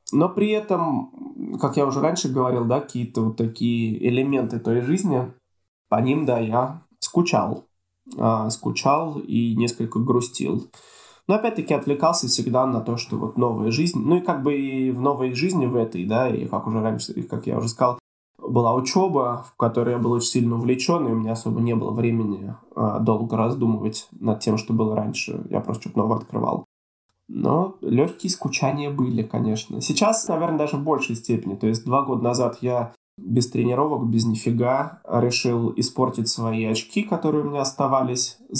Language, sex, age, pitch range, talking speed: Russian, male, 20-39, 115-145 Hz, 170 wpm